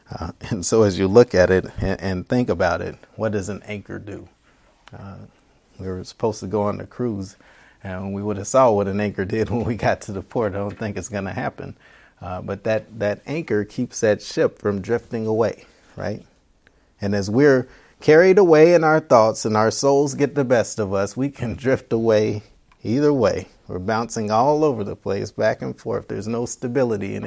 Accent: American